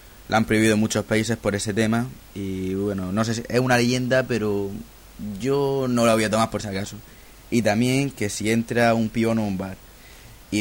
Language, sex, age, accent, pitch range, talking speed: Spanish, male, 20-39, Spanish, 105-120 Hz, 210 wpm